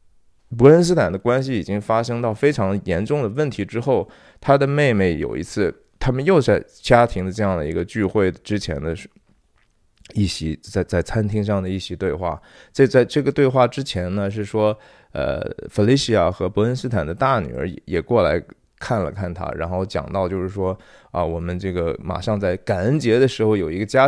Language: Chinese